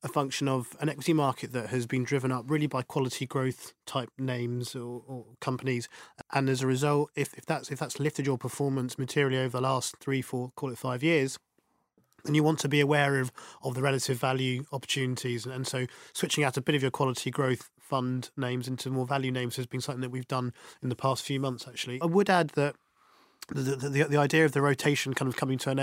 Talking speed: 230 wpm